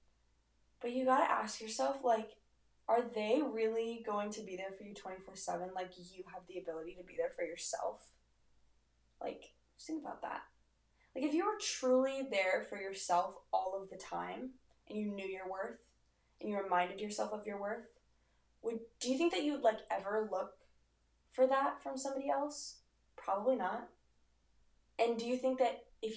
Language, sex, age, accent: English, female, 10-29, American